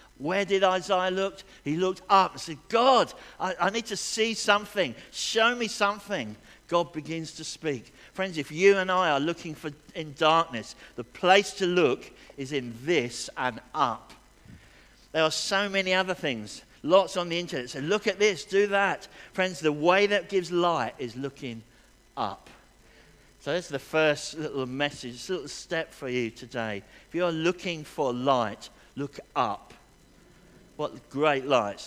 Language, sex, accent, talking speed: English, male, British, 175 wpm